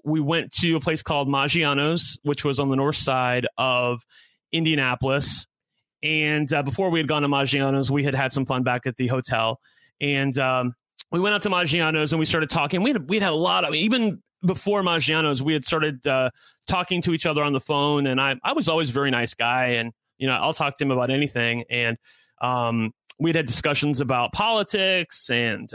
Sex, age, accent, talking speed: male, 30-49, American, 215 wpm